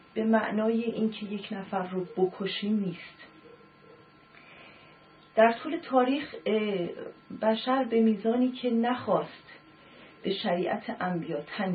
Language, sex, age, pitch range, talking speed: Persian, female, 40-59, 170-230 Hz, 100 wpm